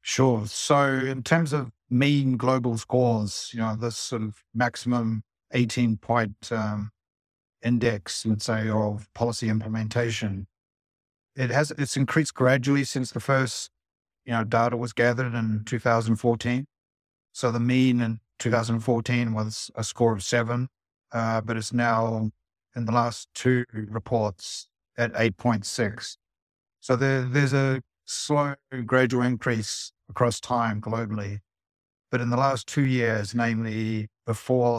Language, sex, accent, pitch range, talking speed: English, male, Australian, 110-125 Hz, 135 wpm